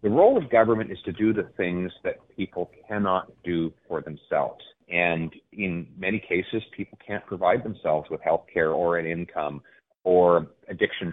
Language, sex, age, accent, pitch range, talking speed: English, male, 30-49, American, 85-100 Hz, 160 wpm